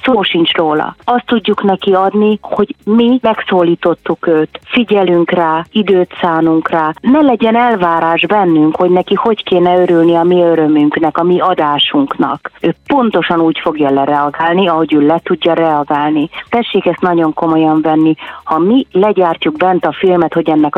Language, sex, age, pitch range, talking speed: Hungarian, female, 30-49, 155-195 Hz, 155 wpm